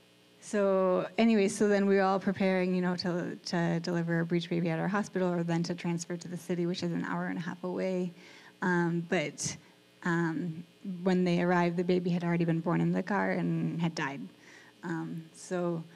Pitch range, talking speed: 175-200 Hz, 205 wpm